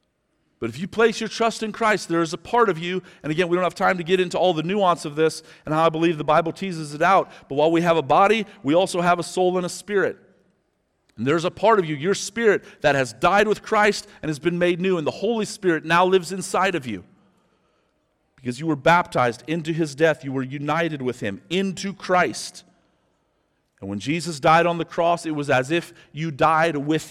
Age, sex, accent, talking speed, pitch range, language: 40-59, male, American, 235 wpm, 130-180 Hz, English